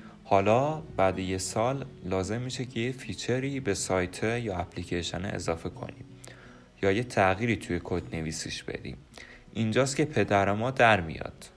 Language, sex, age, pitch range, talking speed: Persian, male, 30-49, 95-125 Hz, 145 wpm